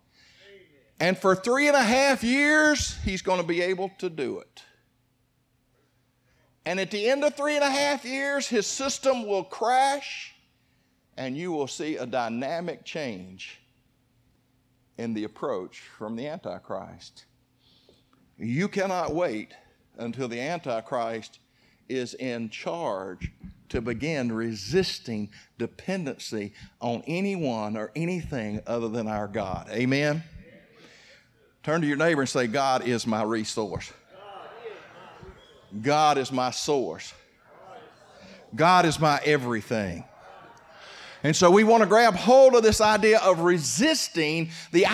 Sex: male